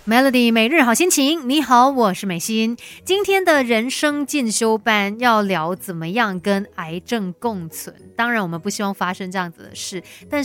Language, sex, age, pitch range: Chinese, female, 30-49, 190-250 Hz